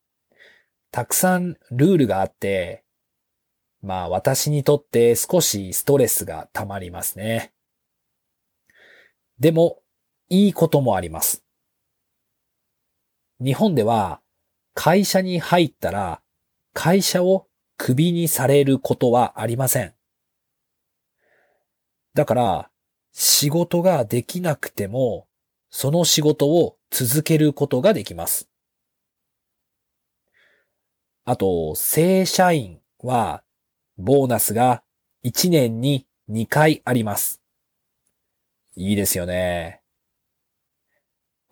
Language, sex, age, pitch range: Japanese, male, 40-59, 110-155 Hz